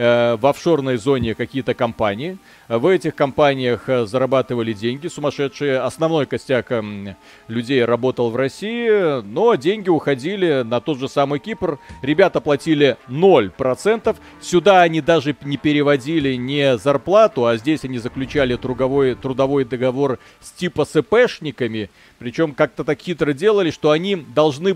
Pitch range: 125-155 Hz